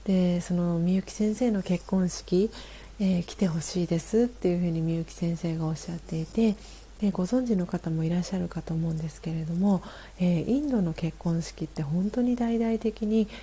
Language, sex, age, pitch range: Japanese, female, 40-59, 170-200 Hz